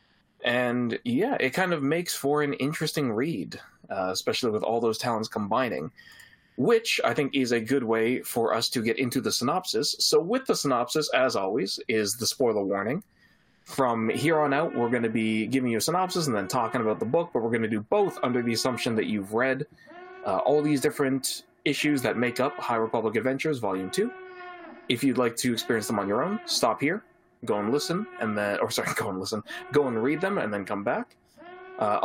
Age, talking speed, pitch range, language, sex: 20-39, 215 wpm, 115-155 Hz, English, male